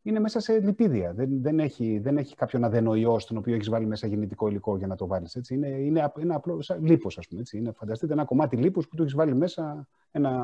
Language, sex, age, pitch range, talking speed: Greek, male, 30-49, 110-140 Hz, 220 wpm